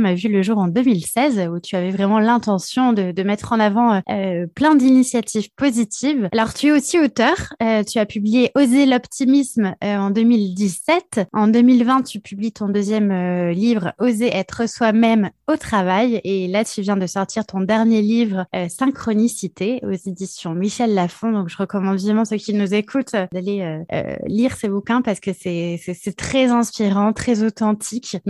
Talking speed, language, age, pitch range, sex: 180 wpm, French, 20-39, 205-245 Hz, female